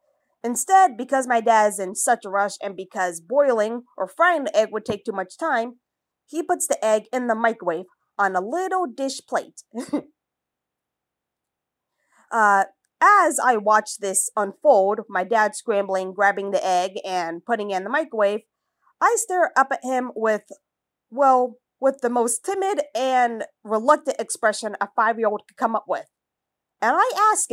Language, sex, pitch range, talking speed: English, female, 210-290 Hz, 160 wpm